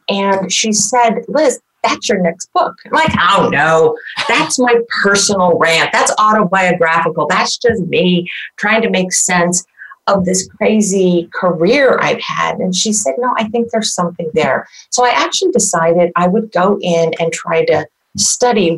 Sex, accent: female, American